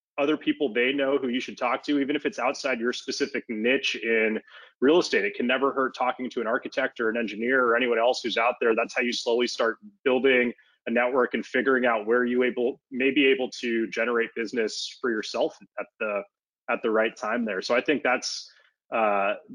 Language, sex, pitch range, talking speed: English, male, 120-145 Hz, 215 wpm